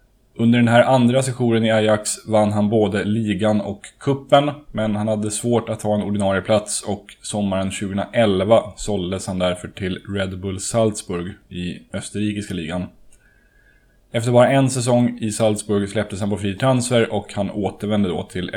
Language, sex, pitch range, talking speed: Swedish, male, 100-120 Hz, 160 wpm